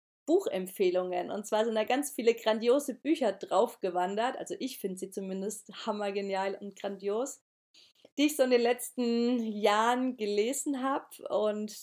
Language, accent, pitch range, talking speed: German, German, 200-250 Hz, 145 wpm